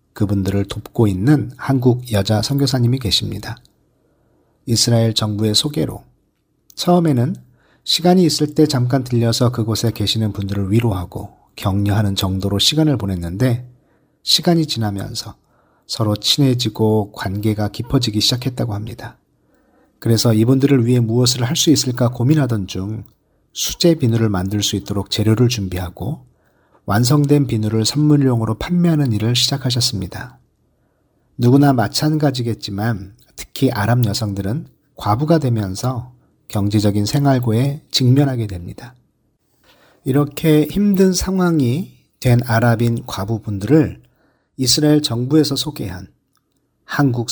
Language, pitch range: Korean, 105-145 Hz